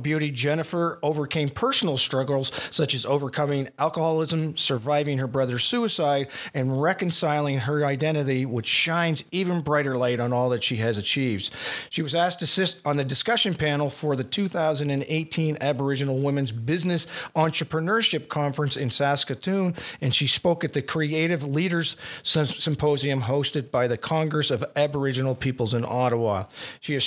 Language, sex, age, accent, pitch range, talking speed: English, male, 50-69, American, 135-165 Hz, 145 wpm